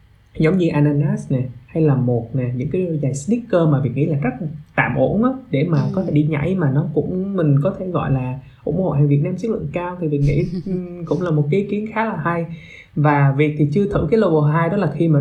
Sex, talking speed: male, 255 wpm